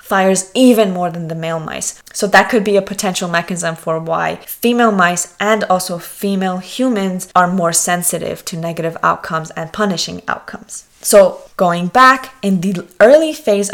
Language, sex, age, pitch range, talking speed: English, female, 20-39, 170-210 Hz, 160 wpm